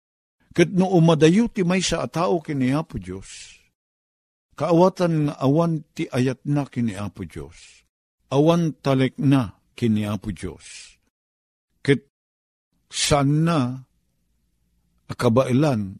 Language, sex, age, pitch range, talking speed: Filipino, male, 50-69, 95-155 Hz, 85 wpm